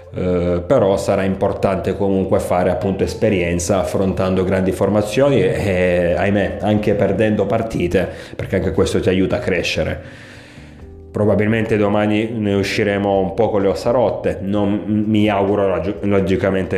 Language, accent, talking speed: Italian, native, 130 wpm